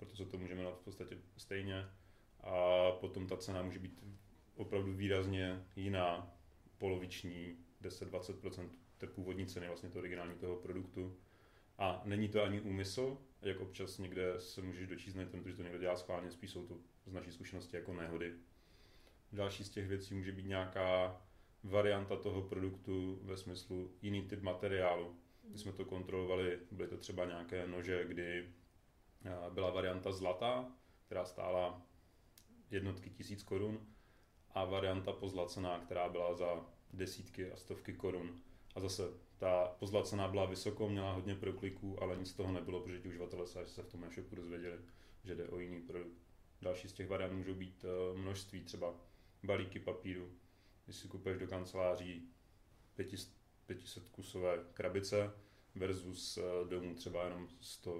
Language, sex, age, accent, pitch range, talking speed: Czech, male, 30-49, native, 90-95 Hz, 150 wpm